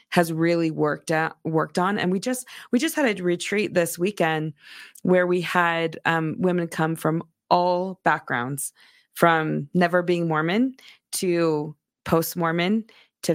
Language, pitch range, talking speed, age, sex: English, 160-180 Hz, 150 wpm, 20-39, female